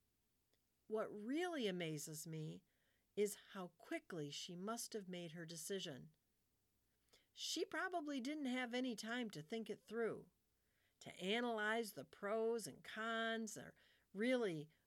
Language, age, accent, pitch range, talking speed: English, 50-69, American, 170-235 Hz, 125 wpm